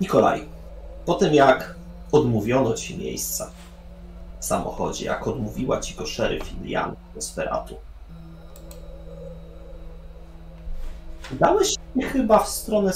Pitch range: 80-115 Hz